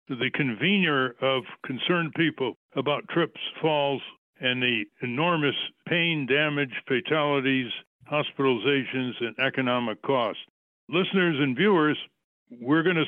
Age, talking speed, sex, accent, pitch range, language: 60-79, 110 wpm, male, American, 130-165 Hz, English